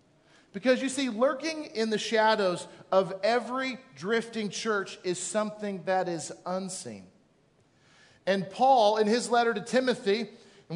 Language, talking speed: English, 135 wpm